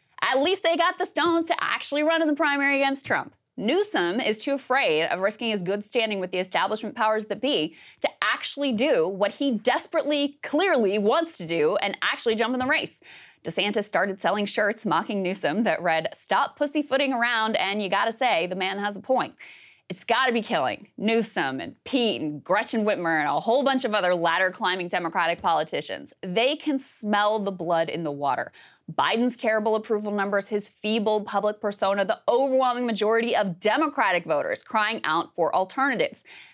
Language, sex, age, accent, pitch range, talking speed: English, female, 30-49, American, 200-275 Hz, 180 wpm